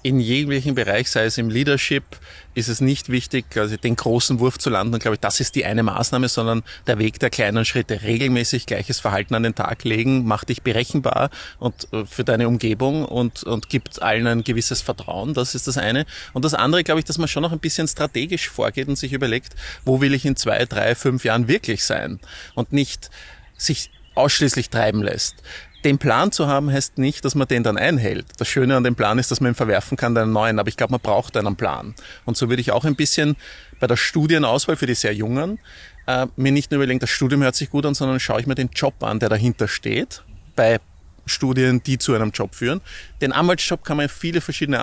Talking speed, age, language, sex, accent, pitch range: 225 wpm, 30-49, German, male, Austrian, 115-140 Hz